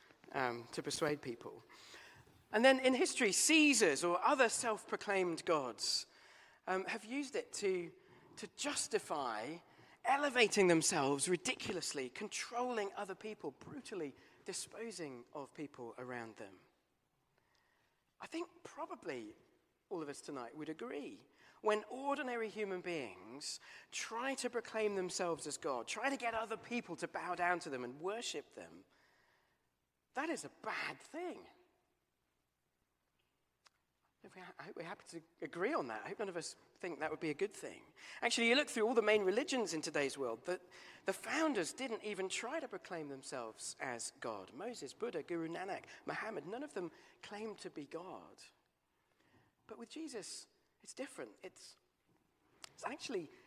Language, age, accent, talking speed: English, 40-59, British, 145 wpm